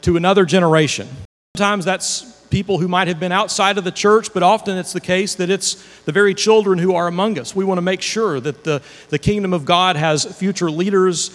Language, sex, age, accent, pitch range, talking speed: English, male, 40-59, American, 165-205 Hz, 215 wpm